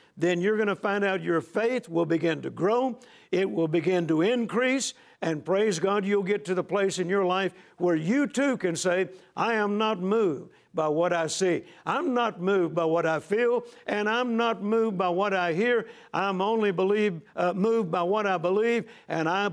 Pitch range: 175-225 Hz